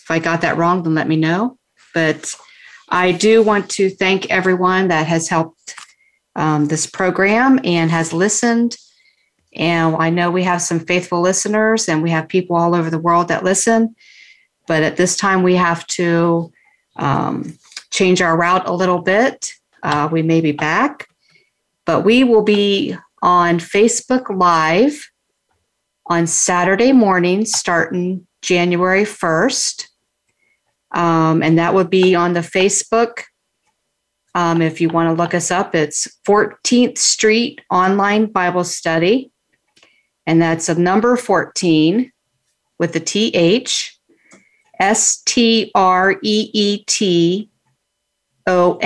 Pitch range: 170-215 Hz